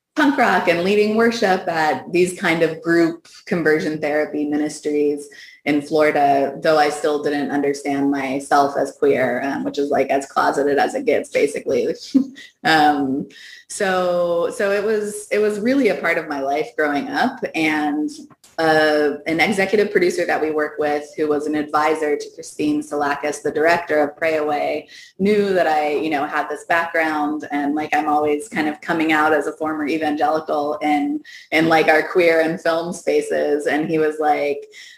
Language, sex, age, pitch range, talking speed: English, female, 20-39, 150-185 Hz, 175 wpm